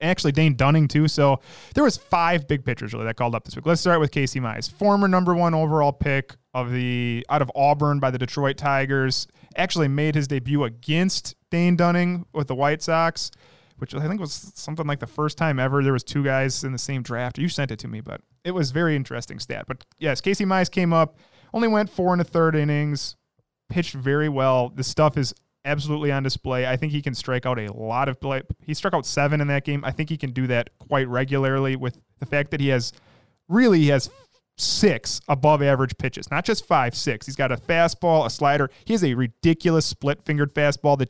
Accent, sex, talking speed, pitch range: American, male, 220 wpm, 130-160 Hz